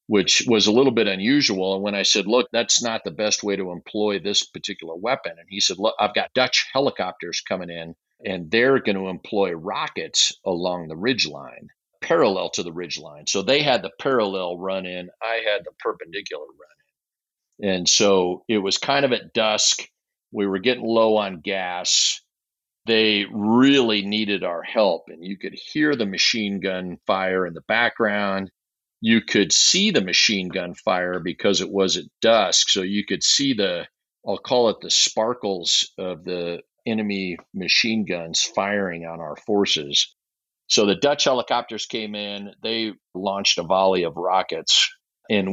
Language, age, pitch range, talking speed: English, 50-69, 90-110 Hz, 170 wpm